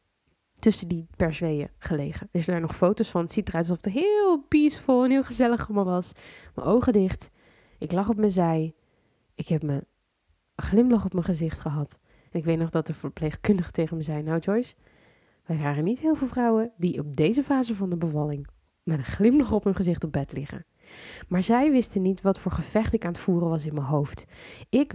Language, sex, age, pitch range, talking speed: Dutch, female, 20-39, 160-225 Hz, 215 wpm